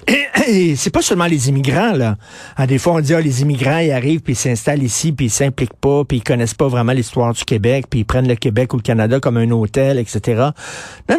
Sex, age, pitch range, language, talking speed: male, 50-69, 130-170 Hz, French, 255 wpm